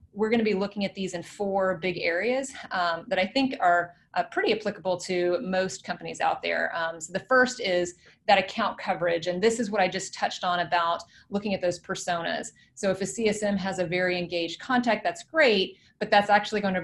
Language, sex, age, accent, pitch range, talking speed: English, female, 30-49, American, 170-205 Hz, 215 wpm